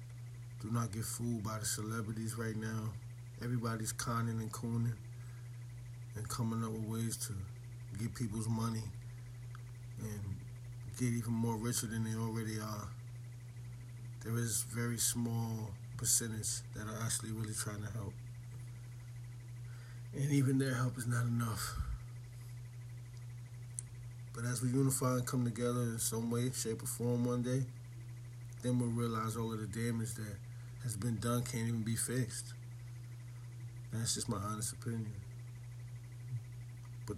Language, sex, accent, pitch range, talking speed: English, male, American, 115-120 Hz, 140 wpm